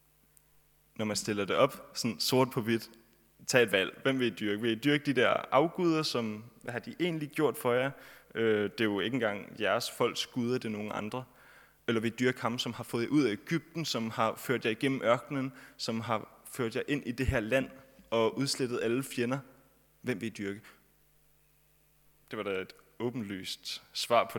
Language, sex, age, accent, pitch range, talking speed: Danish, male, 20-39, native, 110-150 Hz, 205 wpm